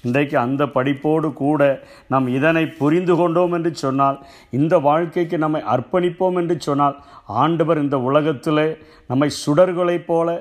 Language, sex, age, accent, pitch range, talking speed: Tamil, male, 50-69, native, 140-165 Hz, 125 wpm